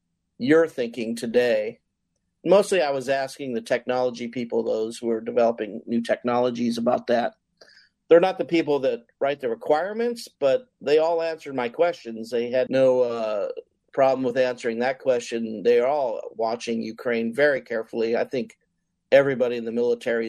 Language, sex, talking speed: English, male, 160 wpm